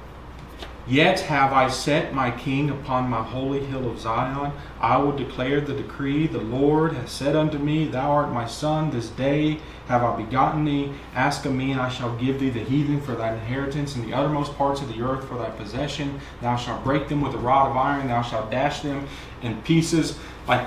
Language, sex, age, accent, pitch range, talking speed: English, male, 30-49, American, 130-195 Hz, 210 wpm